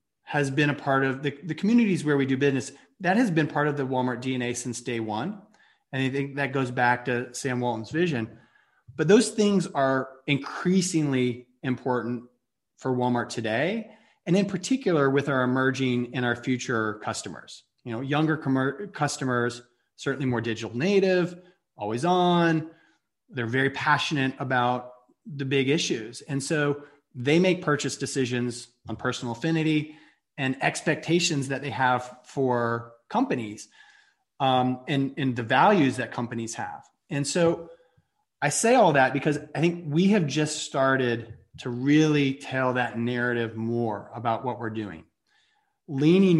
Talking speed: 150 wpm